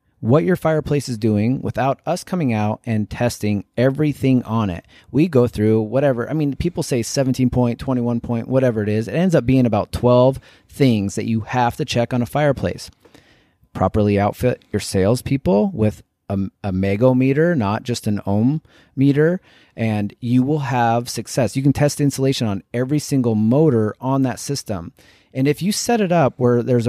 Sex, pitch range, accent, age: male, 110-145 Hz, American, 30-49